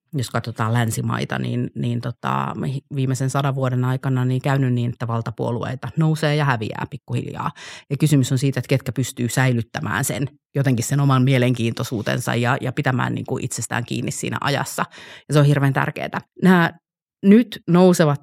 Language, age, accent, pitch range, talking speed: Finnish, 30-49, native, 125-155 Hz, 160 wpm